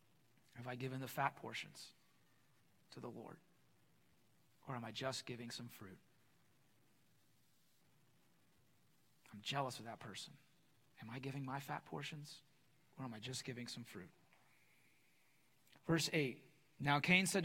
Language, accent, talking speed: English, American, 135 wpm